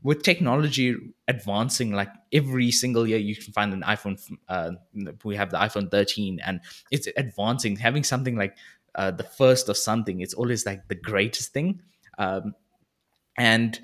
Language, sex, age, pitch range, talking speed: English, male, 20-39, 100-120 Hz, 160 wpm